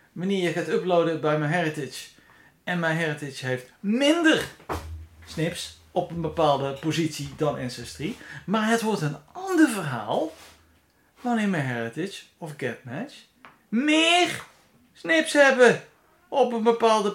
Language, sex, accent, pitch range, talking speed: Dutch, male, Dutch, 150-230 Hz, 125 wpm